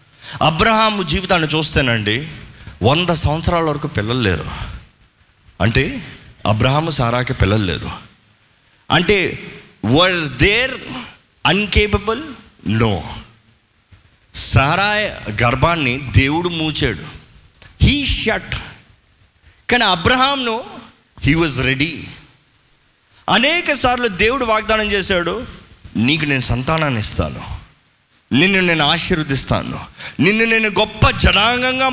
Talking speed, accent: 85 wpm, native